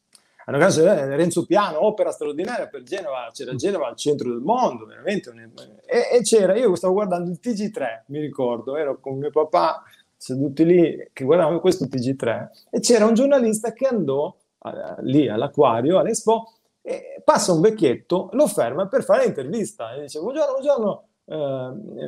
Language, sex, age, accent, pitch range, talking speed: Italian, male, 30-49, native, 145-225 Hz, 160 wpm